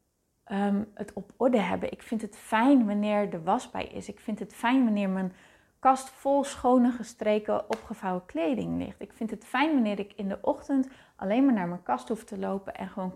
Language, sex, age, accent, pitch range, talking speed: Dutch, female, 30-49, Dutch, 205-255 Hz, 205 wpm